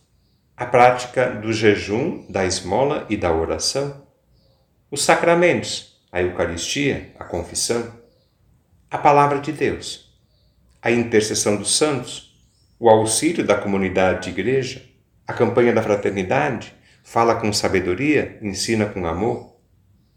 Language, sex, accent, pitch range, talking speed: Portuguese, male, Brazilian, 105-135 Hz, 115 wpm